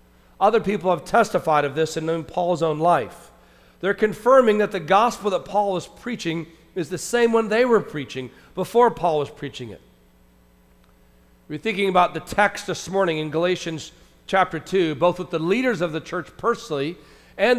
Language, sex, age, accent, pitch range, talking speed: English, male, 40-59, American, 155-215 Hz, 175 wpm